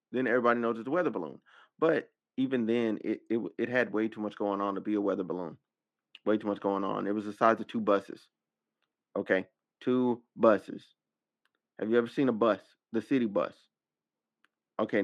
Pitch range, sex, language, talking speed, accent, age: 95-115 Hz, male, English, 195 wpm, American, 30-49